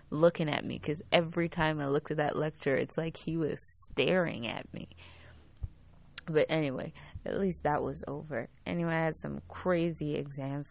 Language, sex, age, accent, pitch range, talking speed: English, female, 20-39, American, 140-175 Hz, 175 wpm